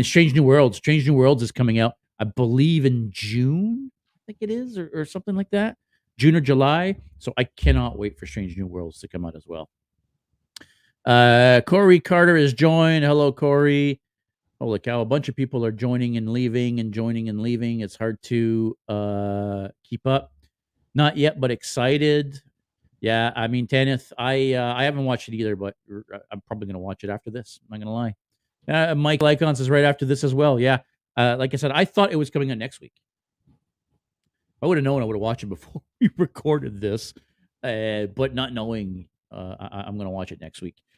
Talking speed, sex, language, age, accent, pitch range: 205 wpm, male, English, 50-69, American, 110-145 Hz